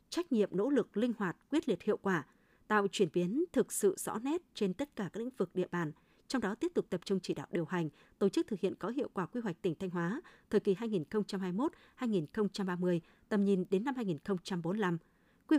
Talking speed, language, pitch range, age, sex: 215 wpm, Vietnamese, 185-230 Hz, 20-39, female